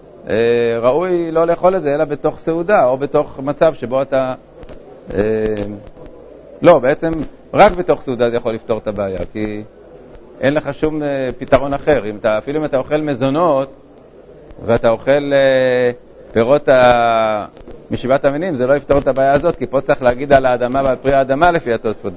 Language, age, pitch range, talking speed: Hebrew, 50-69, 120-150 Hz, 165 wpm